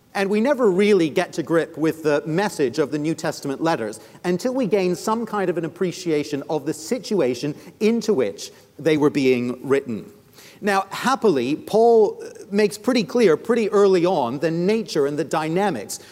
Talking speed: 170 wpm